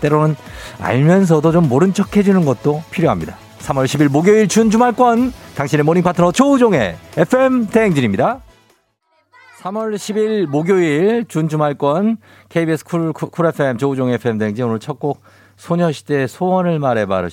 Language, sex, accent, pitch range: Korean, male, native, 100-155 Hz